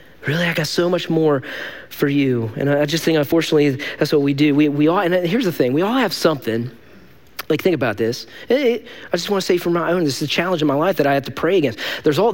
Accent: American